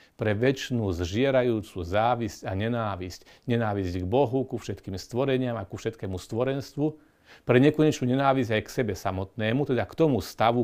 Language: Slovak